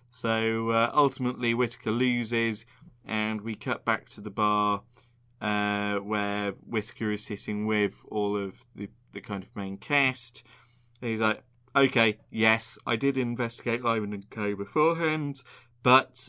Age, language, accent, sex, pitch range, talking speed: 20-39, English, British, male, 105-125 Hz, 145 wpm